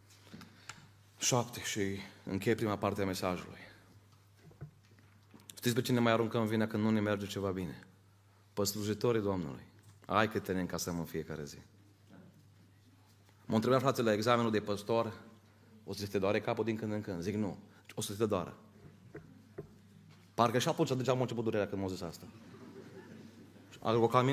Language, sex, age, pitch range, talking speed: Romanian, male, 30-49, 100-130 Hz, 160 wpm